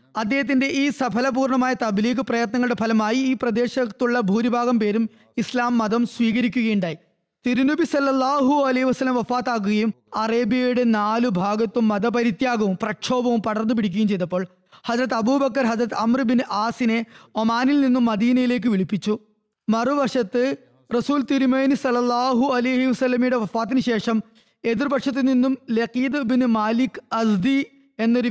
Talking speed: 110 wpm